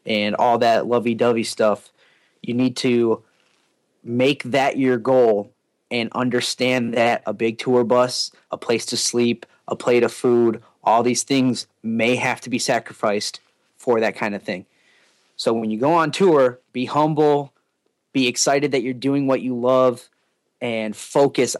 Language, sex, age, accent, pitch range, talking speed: English, male, 30-49, American, 115-135 Hz, 160 wpm